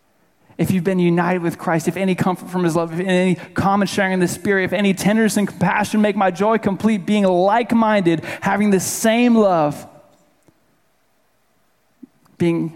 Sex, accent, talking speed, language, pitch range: male, American, 170 wpm, English, 160-195 Hz